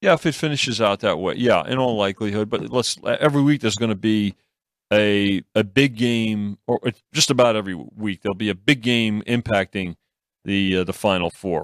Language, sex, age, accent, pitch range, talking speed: English, male, 40-59, American, 100-125 Hz, 200 wpm